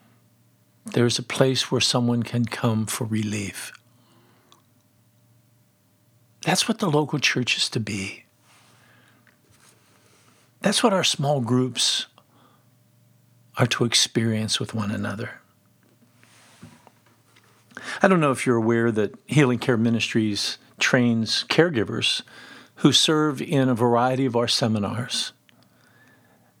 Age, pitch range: 50-69, 120-170 Hz